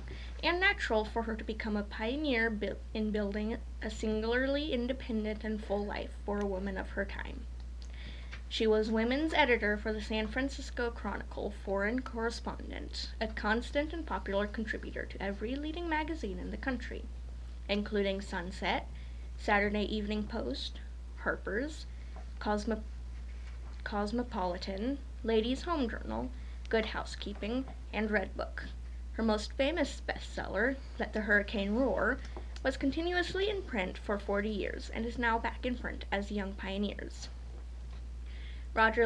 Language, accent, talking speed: English, American, 135 wpm